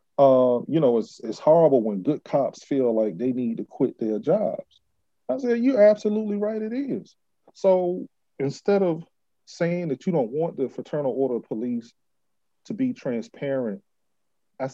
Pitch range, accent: 125-175 Hz, American